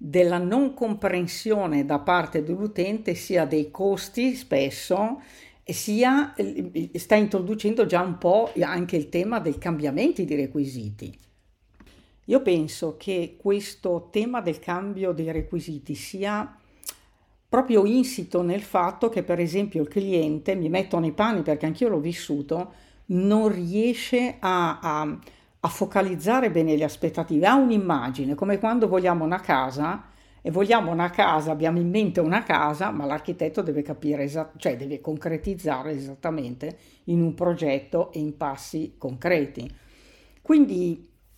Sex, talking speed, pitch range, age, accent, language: female, 130 wpm, 155-205 Hz, 50-69, native, Italian